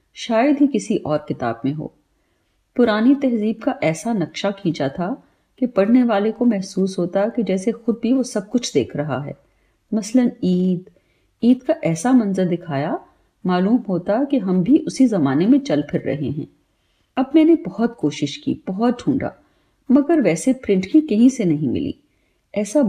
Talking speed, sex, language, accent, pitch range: 170 wpm, female, Hindi, native, 170-255 Hz